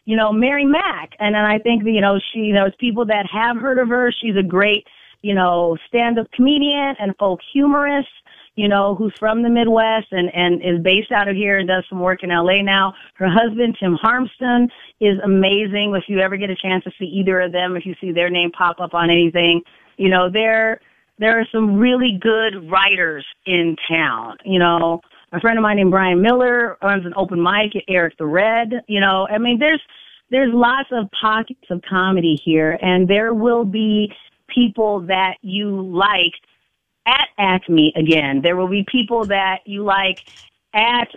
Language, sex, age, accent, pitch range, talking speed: English, female, 30-49, American, 180-225 Hz, 200 wpm